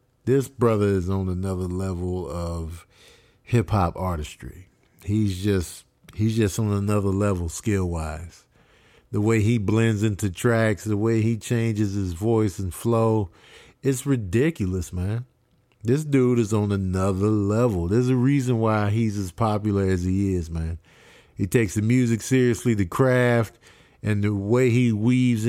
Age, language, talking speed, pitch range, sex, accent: 50-69, English, 150 wpm, 100-125 Hz, male, American